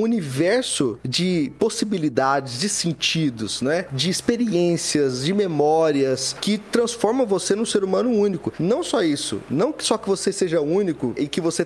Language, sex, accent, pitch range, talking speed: Portuguese, male, Brazilian, 155-215 Hz, 155 wpm